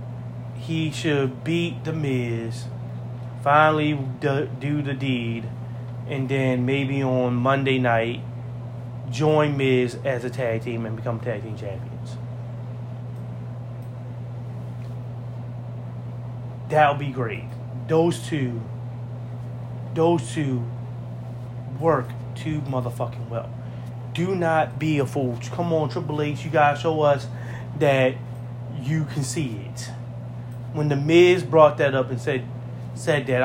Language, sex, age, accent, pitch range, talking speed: English, male, 30-49, American, 120-135 Hz, 120 wpm